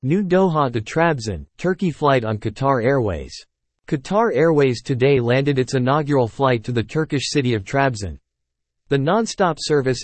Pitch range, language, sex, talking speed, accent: 115-150 Hz, English, male, 150 wpm, American